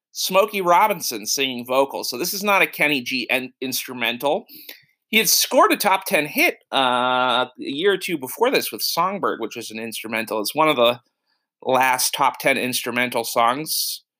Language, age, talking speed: English, 30-49, 175 wpm